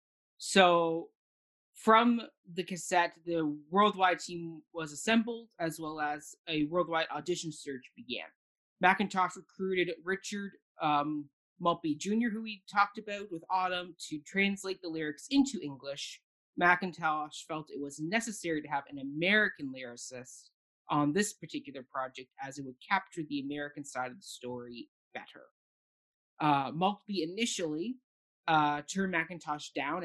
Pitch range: 145-190 Hz